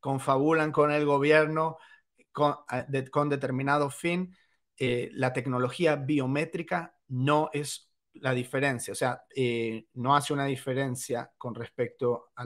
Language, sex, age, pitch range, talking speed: English, male, 40-59, 125-150 Hz, 125 wpm